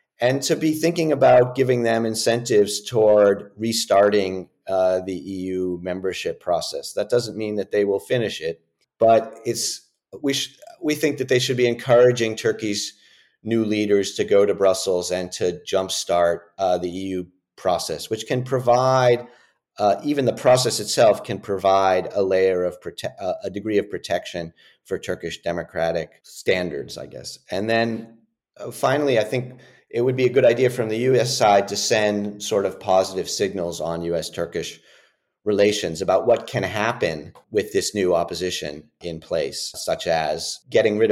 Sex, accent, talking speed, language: male, American, 160 wpm, English